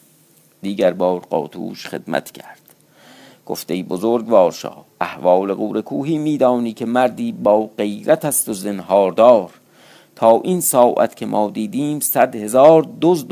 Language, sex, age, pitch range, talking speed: Persian, male, 50-69, 105-160 Hz, 125 wpm